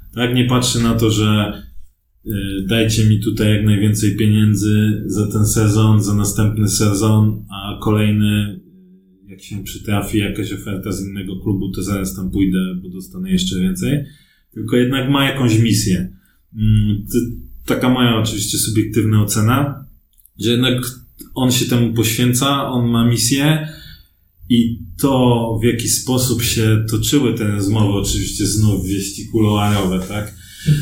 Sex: male